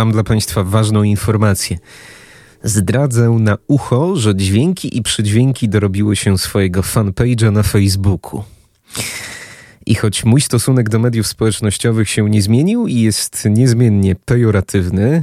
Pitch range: 100-120 Hz